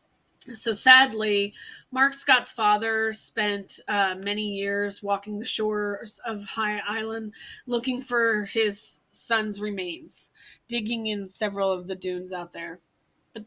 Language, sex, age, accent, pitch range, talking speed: English, female, 30-49, American, 200-230 Hz, 130 wpm